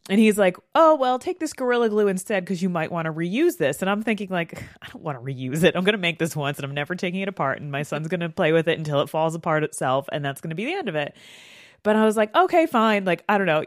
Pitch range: 150-200 Hz